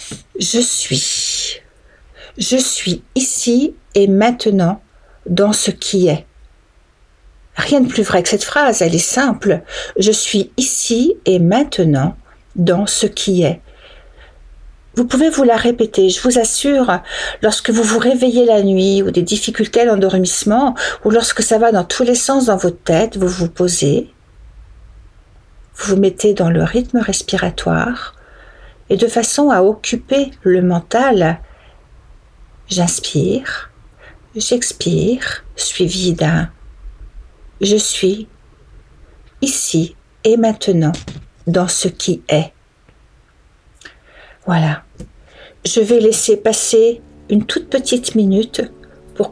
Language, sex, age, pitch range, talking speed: French, female, 60-79, 170-235 Hz, 125 wpm